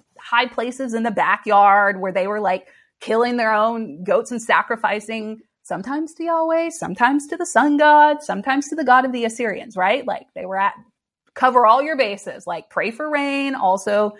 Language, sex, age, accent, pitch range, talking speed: English, female, 30-49, American, 195-270 Hz, 185 wpm